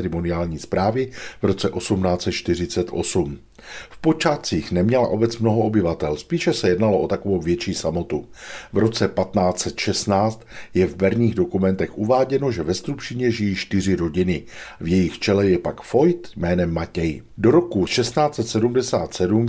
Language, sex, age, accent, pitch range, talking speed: Czech, male, 50-69, native, 90-115 Hz, 130 wpm